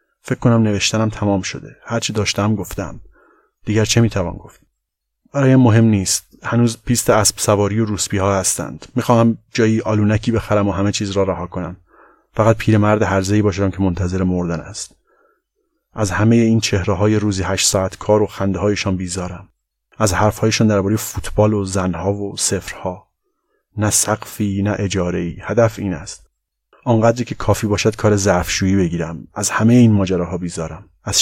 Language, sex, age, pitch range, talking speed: Persian, male, 30-49, 95-115 Hz, 170 wpm